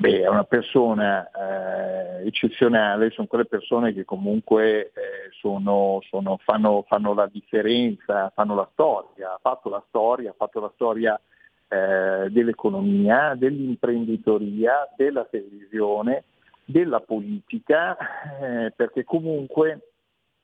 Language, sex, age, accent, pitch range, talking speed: Italian, male, 40-59, native, 115-165 Hz, 115 wpm